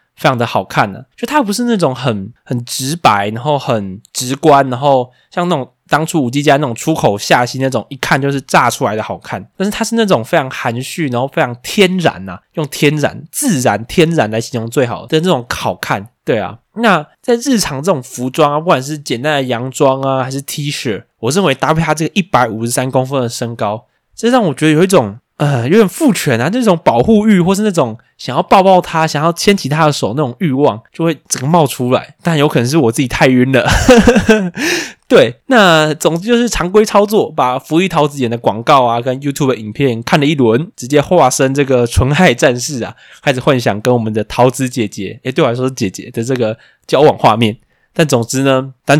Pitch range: 120-165 Hz